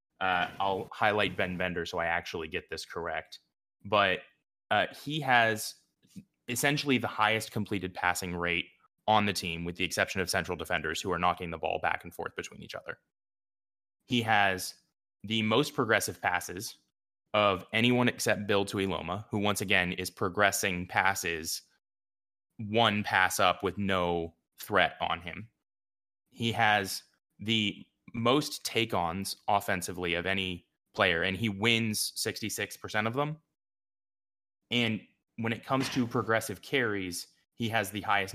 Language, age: English, 20-39